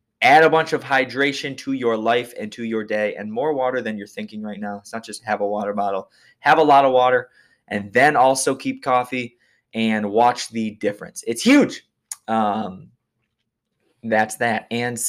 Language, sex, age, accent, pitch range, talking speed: English, male, 20-39, American, 110-155 Hz, 185 wpm